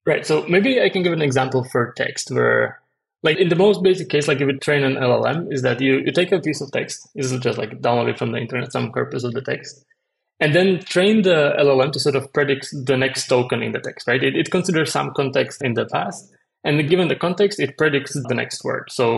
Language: English